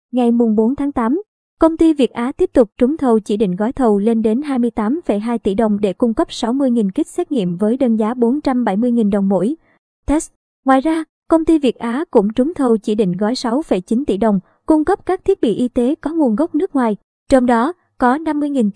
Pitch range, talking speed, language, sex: 215-265 Hz, 215 wpm, Vietnamese, male